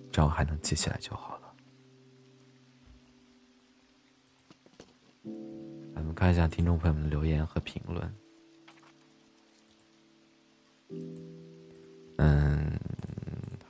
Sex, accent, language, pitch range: male, native, Chinese, 75-110 Hz